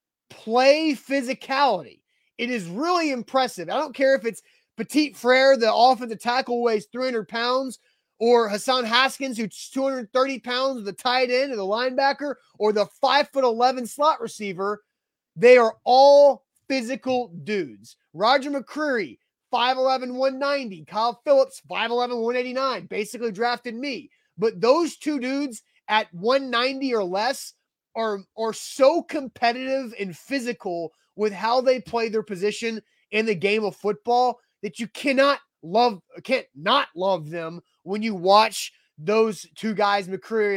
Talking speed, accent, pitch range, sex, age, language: 140 wpm, American, 200-260 Hz, male, 30-49, English